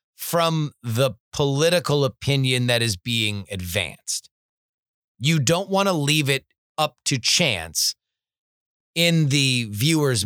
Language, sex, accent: English, male, American